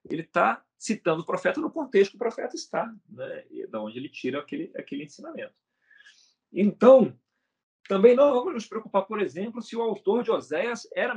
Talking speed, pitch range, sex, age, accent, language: 175 wpm, 145-235 Hz, male, 40-59, Brazilian, Portuguese